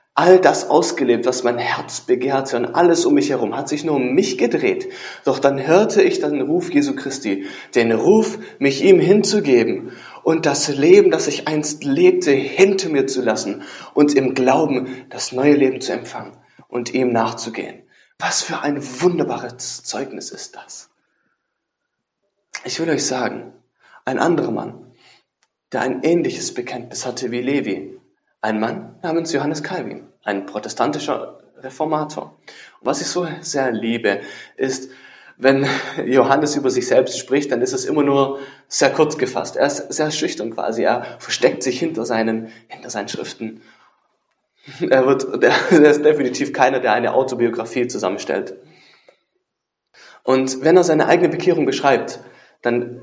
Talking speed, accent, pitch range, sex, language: 150 wpm, German, 130-200 Hz, male, English